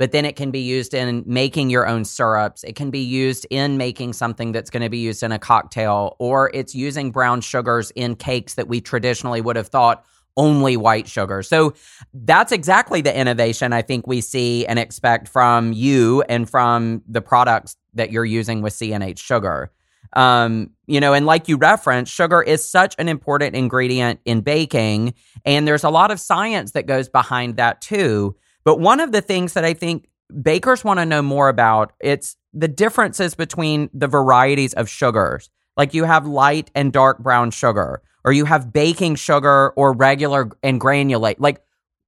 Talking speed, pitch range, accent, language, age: 185 wpm, 120-150 Hz, American, English, 30-49